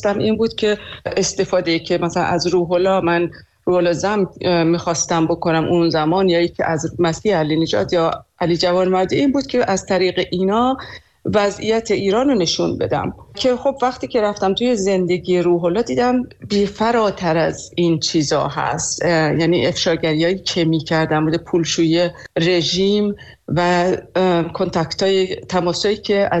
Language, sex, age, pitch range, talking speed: Persian, female, 40-59, 165-200 Hz, 140 wpm